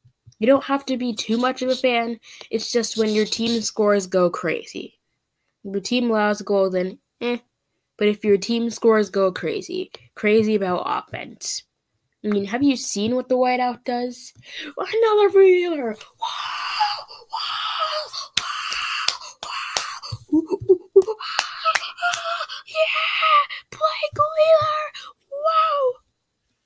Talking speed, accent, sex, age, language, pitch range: 115 wpm, American, female, 10-29, English, 170-255 Hz